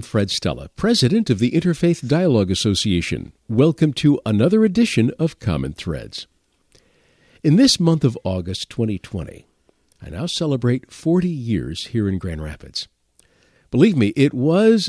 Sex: male